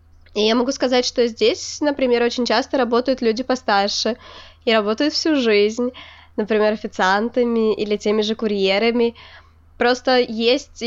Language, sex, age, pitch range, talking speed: Ukrainian, female, 20-39, 210-245 Hz, 130 wpm